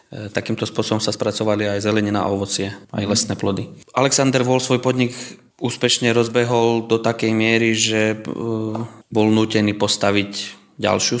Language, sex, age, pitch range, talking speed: Slovak, male, 20-39, 105-115 Hz, 135 wpm